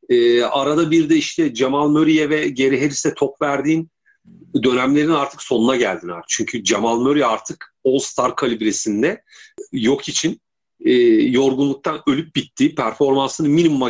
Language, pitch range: Turkish, 130-195 Hz